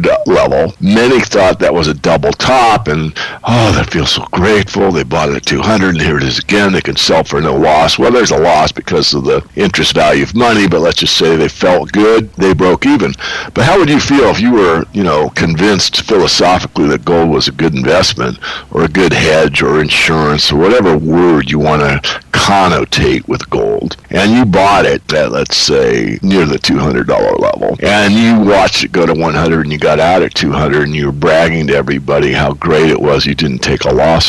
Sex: male